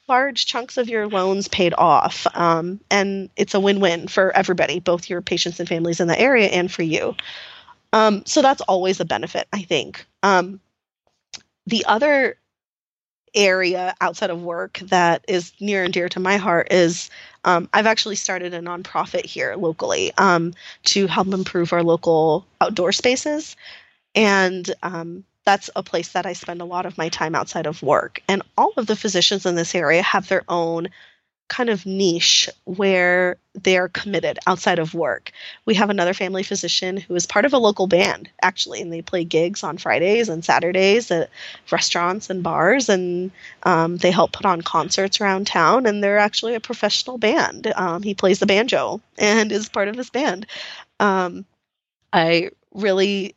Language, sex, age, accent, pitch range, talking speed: English, female, 20-39, American, 175-205 Hz, 175 wpm